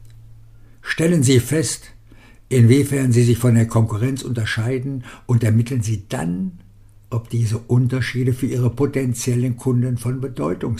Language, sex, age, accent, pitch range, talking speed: German, male, 60-79, German, 110-130 Hz, 130 wpm